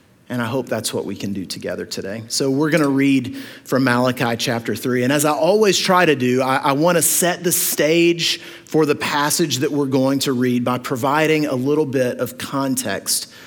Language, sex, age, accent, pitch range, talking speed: English, male, 30-49, American, 130-175 Hz, 205 wpm